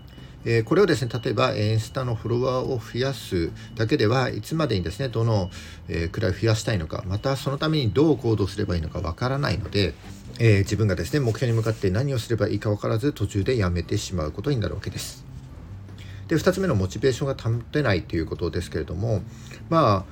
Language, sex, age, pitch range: Japanese, male, 50-69, 95-125 Hz